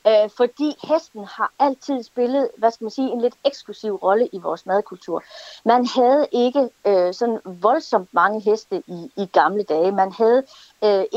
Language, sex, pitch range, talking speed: Danish, female, 180-240 Hz, 165 wpm